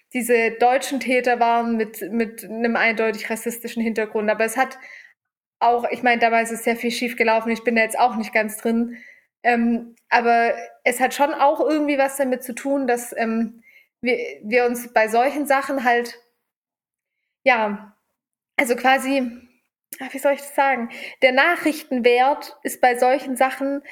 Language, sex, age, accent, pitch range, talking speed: German, female, 20-39, German, 235-270 Hz, 165 wpm